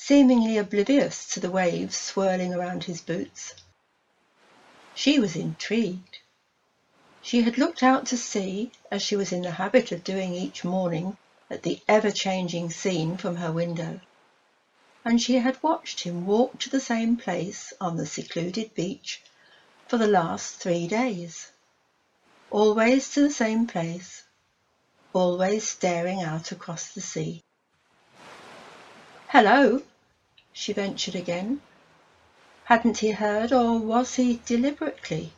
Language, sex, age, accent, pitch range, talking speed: English, female, 60-79, British, 180-255 Hz, 130 wpm